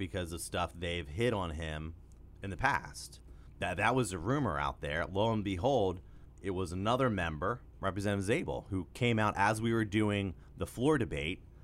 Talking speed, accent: 185 wpm, American